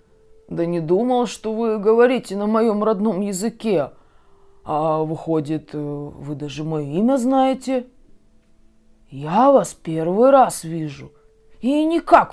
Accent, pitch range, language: native, 155-220 Hz, Russian